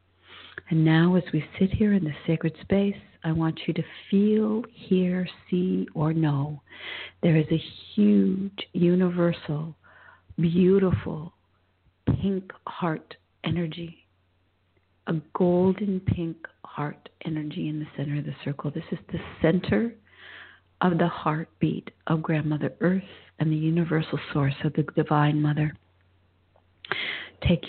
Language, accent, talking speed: English, American, 125 wpm